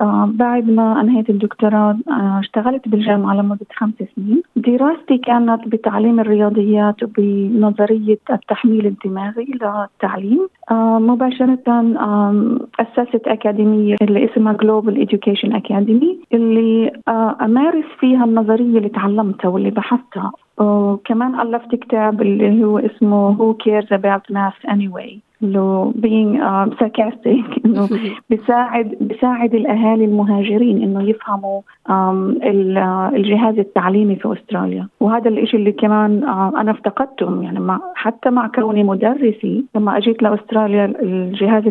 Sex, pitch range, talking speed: female, 205-235 Hz, 110 wpm